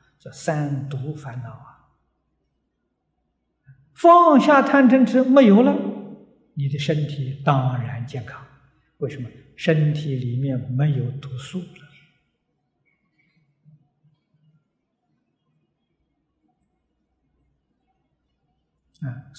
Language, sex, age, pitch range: Chinese, male, 60-79, 135-170 Hz